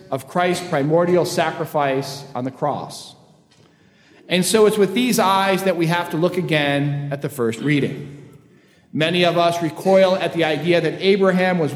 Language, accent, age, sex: English, American, 40-59, male